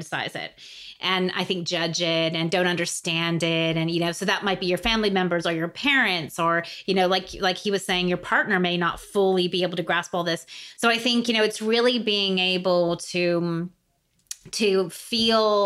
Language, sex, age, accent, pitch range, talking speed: English, female, 30-49, American, 170-195 Hz, 210 wpm